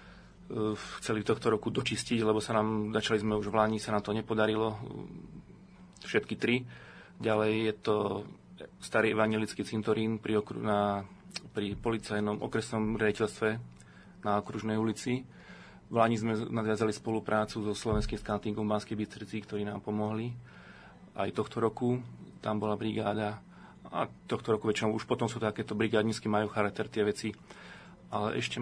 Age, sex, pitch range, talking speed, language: 30-49, male, 105-115 Hz, 145 wpm, Slovak